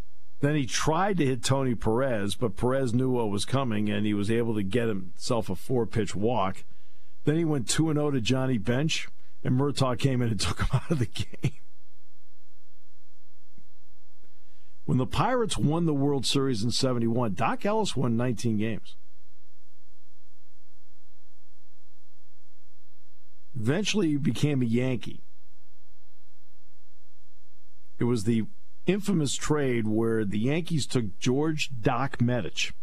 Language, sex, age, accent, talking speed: English, male, 50-69, American, 130 wpm